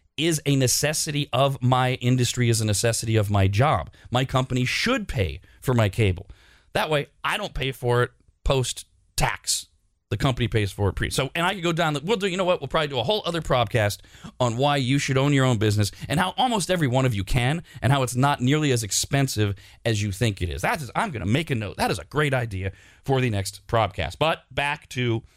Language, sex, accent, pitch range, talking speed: English, male, American, 105-150 Hz, 240 wpm